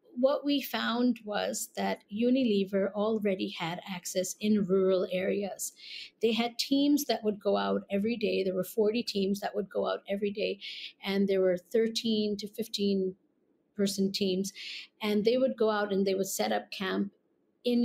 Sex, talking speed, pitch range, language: female, 170 wpm, 190-220 Hz, English